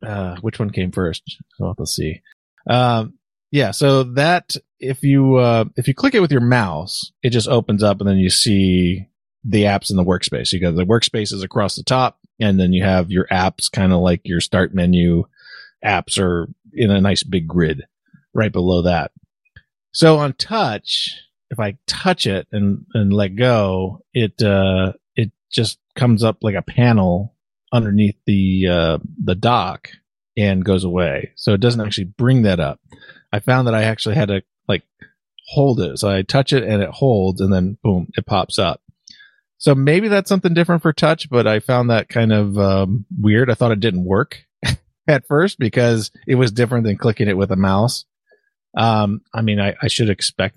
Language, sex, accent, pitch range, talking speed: English, male, American, 95-130 Hz, 190 wpm